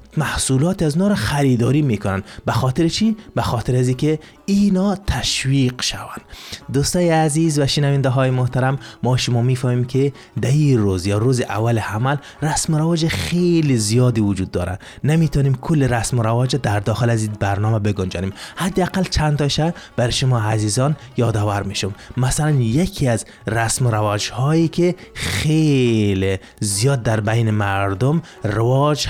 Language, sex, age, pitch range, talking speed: Persian, male, 30-49, 110-145 Hz, 145 wpm